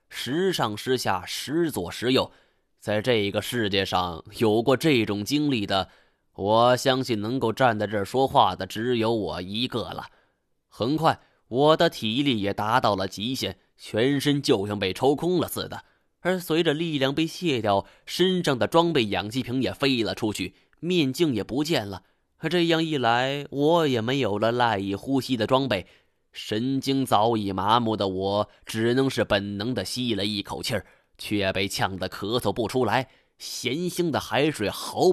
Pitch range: 100-135 Hz